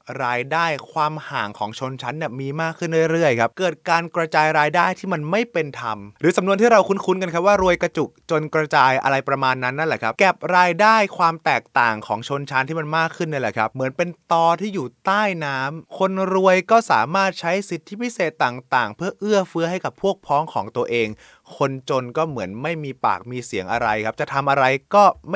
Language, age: Thai, 20-39